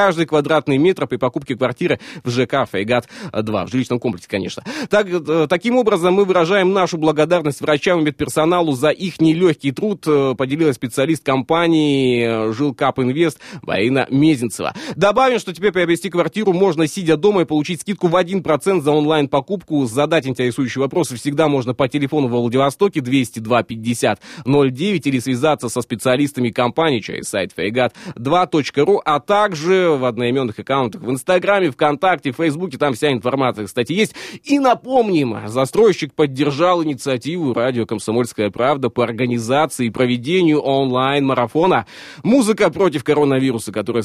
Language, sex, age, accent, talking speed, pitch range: Russian, male, 20-39, native, 135 wpm, 125-170 Hz